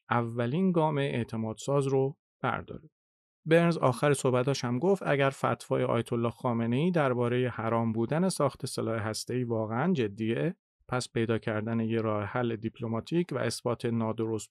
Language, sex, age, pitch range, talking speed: Persian, male, 40-59, 115-155 Hz, 135 wpm